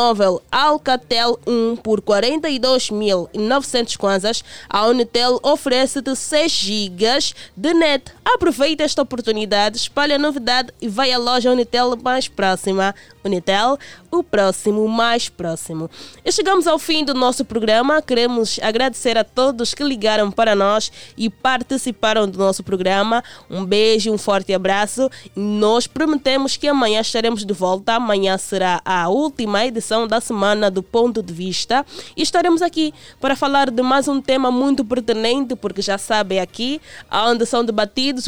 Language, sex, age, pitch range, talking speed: Portuguese, female, 20-39, 210-260 Hz, 145 wpm